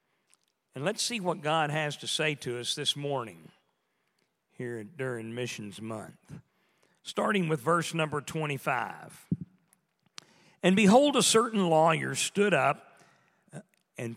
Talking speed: 125 wpm